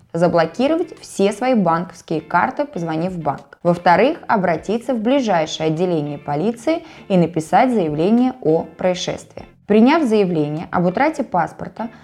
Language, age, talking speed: Russian, 20-39, 120 wpm